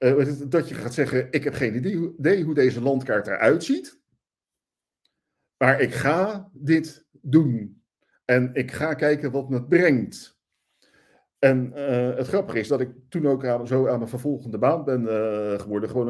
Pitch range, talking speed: 115-160 Hz, 165 wpm